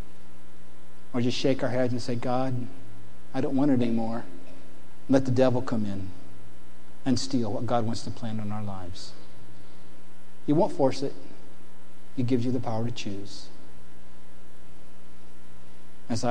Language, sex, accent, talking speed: English, male, American, 145 wpm